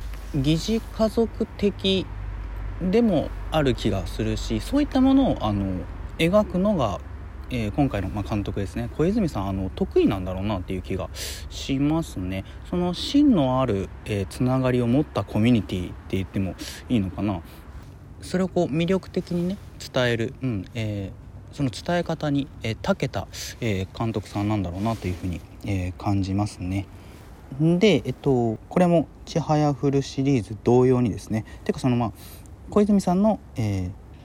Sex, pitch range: male, 95-140 Hz